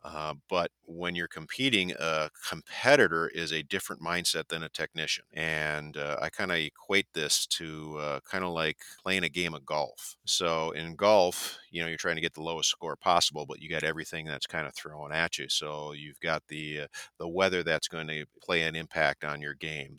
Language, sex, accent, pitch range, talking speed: English, male, American, 75-85 Hz, 210 wpm